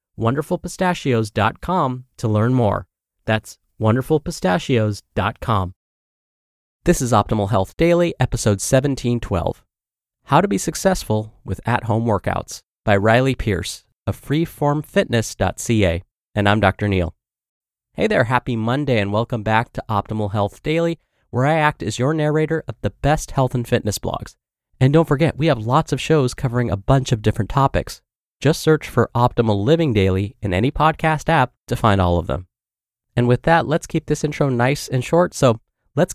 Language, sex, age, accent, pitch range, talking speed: English, male, 30-49, American, 105-145 Hz, 155 wpm